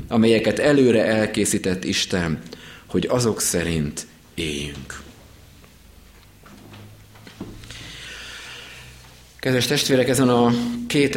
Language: Hungarian